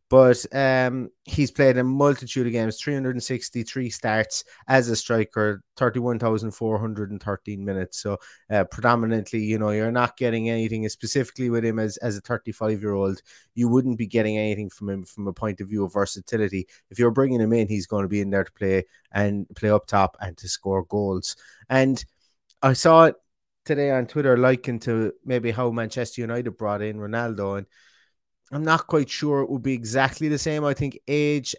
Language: English